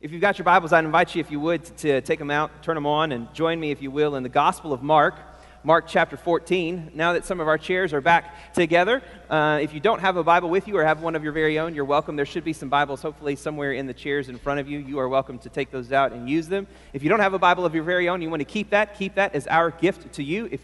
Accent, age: American, 30-49